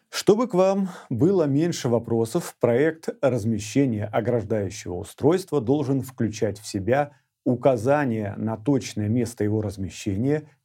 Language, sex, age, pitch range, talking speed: Russian, male, 40-59, 115-150 Hz, 115 wpm